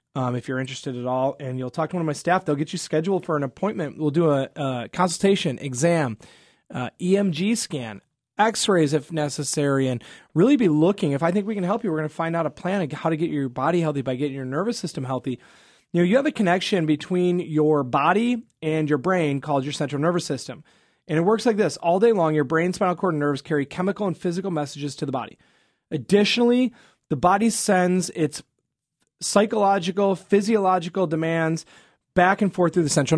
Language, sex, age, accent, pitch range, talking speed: English, male, 30-49, American, 150-200 Hz, 210 wpm